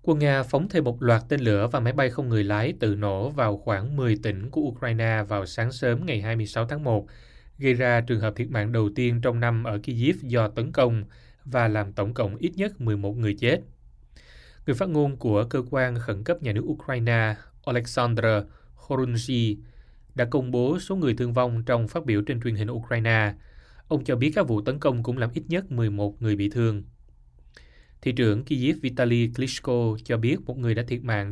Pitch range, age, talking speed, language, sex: 105-130 Hz, 20-39, 205 wpm, Vietnamese, male